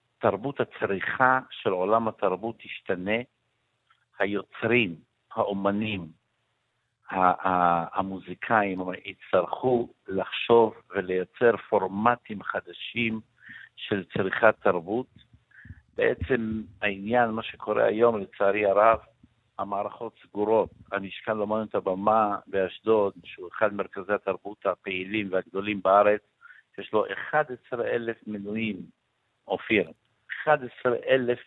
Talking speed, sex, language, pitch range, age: 80 wpm, male, Hebrew, 100-120 Hz, 60-79